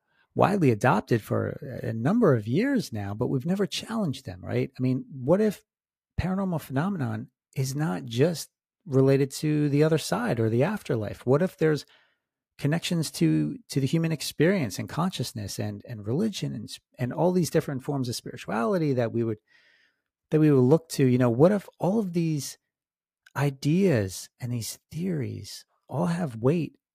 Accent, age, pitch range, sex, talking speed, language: American, 40-59, 120-165 Hz, male, 165 wpm, English